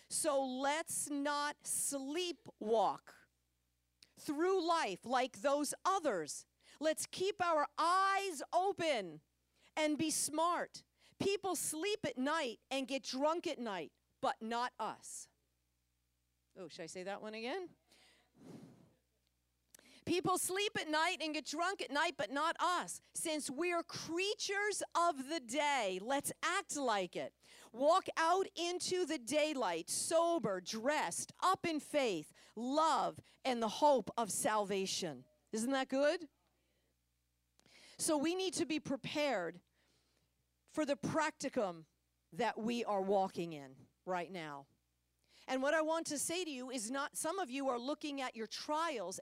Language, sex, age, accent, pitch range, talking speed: English, female, 50-69, American, 195-320 Hz, 135 wpm